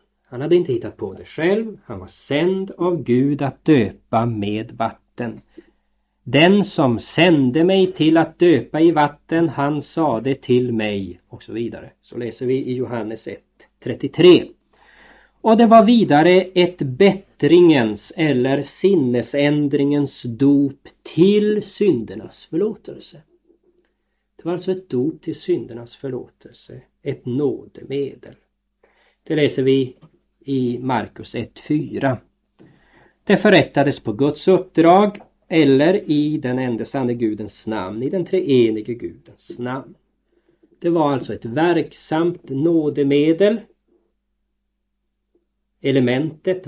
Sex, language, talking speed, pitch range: male, Swedish, 115 wpm, 125-185 Hz